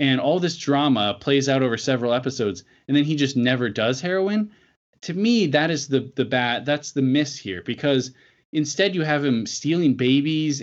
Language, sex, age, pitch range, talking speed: English, male, 20-39, 120-150 Hz, 185 wpm